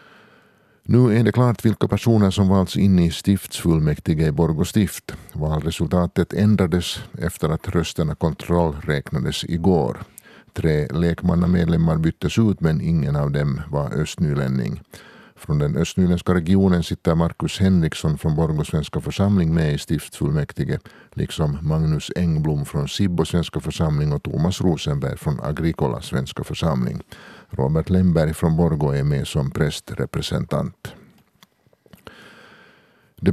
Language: Swedish